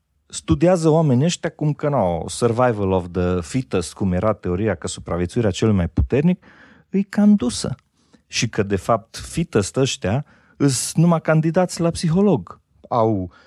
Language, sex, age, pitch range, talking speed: Romanian, male, 40-59, 100-155 Hz, 150 wpm